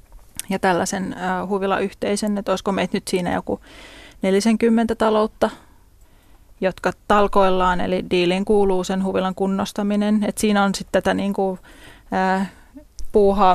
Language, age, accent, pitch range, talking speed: Finnish, 20-39, native, 190-210 Hz, 135 wpm